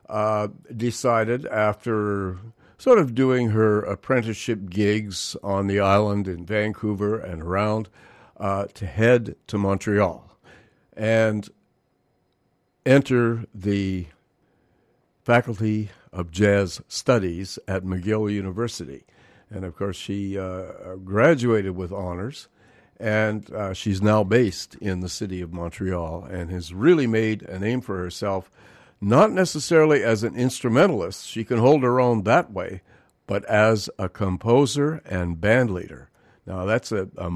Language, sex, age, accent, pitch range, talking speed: English, male, 60-79, American, 95-115 Hz, 125 wpm